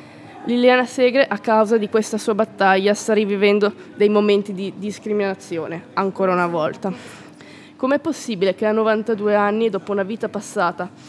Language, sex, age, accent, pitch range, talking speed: Italian, female, 20-39, native, 190-215 Hz, 145 wpm